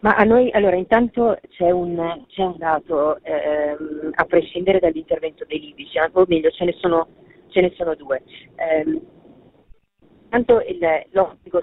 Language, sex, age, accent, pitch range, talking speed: Italian, female, 30-49, native, 155-230 Hz, 150 wpm